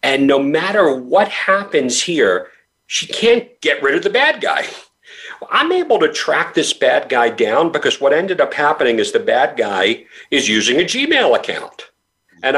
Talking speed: 175 wpm